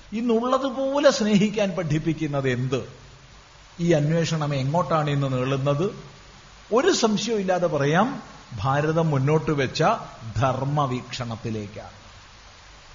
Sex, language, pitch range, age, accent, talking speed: male, Malayalam, 155-240 Hz, 50-69, native, 75 wpm